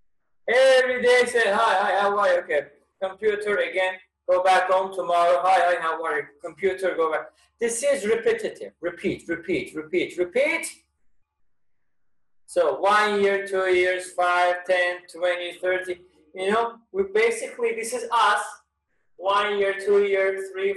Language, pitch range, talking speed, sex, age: English, 185-285 Hz, 145 wpm, male, 30-49